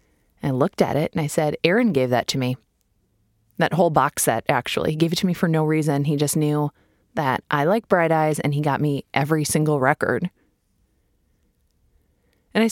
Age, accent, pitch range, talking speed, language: 20-39, American, 130-160 Hz, 200 wpm, English